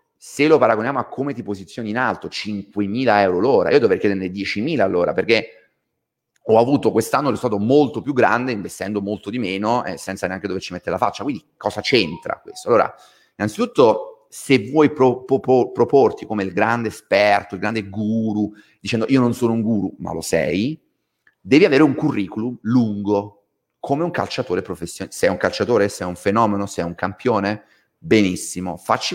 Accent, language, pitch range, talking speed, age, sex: native, Italian, 100-150 Hz, 180 wpm, 30-49, male